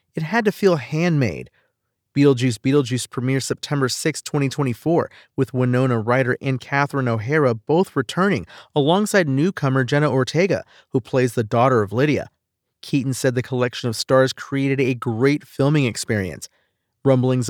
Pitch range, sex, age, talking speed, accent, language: 125-155 Hz, male, 40-59, 140 wpm, American, English